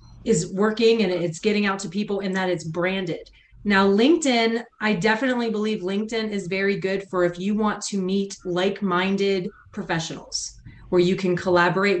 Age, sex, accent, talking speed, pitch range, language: 30-49, female, American, 165 wpm, 185-225 Hz, English